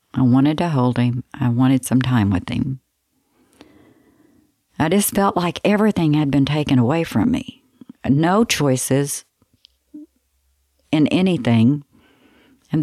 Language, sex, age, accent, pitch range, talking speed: English, female, 60-79, American, 125-155 Hz, 125 wpm